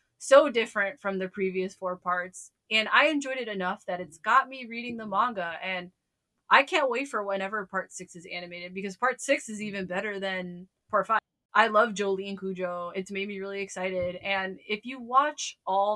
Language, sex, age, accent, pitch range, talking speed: English, female, 20-39, American, 180-220 Hz, 195 wpm